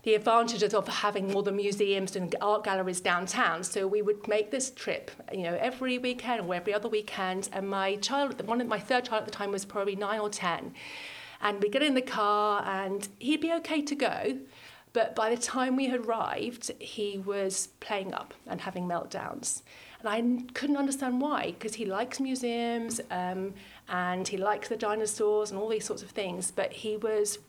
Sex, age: female, 40-59